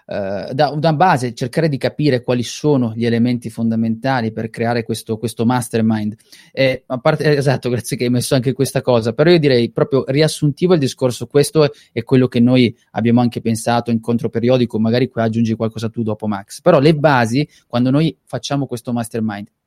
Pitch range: 115-145 Hz